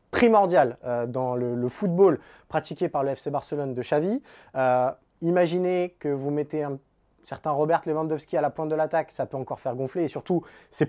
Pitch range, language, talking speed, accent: 135-180 Hz, French, 180 wpm, French